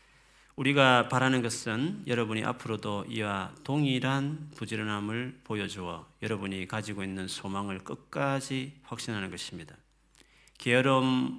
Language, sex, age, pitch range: Korean, male, 40-59, 105-130 Hz